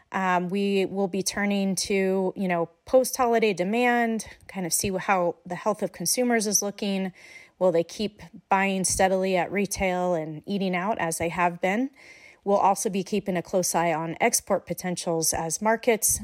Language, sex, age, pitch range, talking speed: English, female, 30-49, 180-225 Hz, 170 wpm